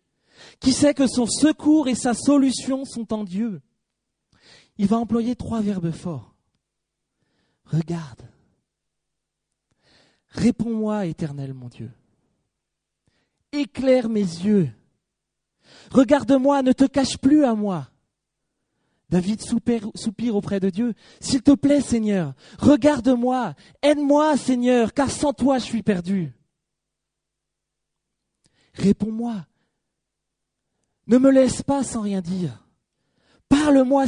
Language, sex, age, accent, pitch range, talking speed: English, male, 30-49, French, 175-255 Hz, 105 wpm